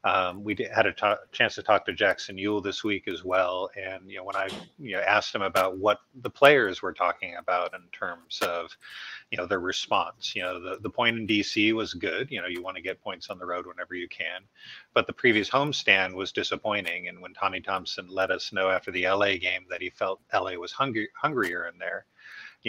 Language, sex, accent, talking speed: English, male, American, 235 wpm